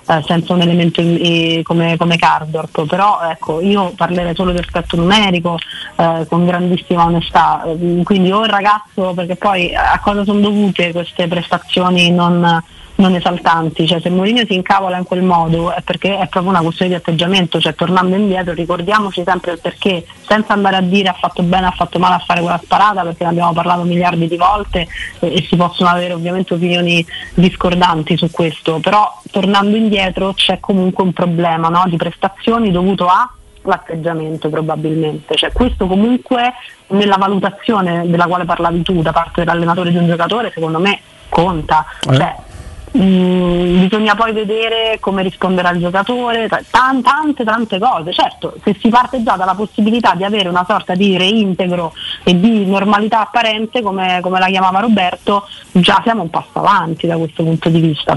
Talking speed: 170 wpm